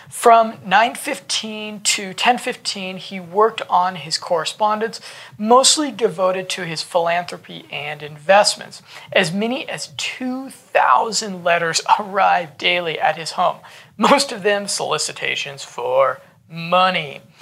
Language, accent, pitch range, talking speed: English, American, 175-225 Hz, 110 wpm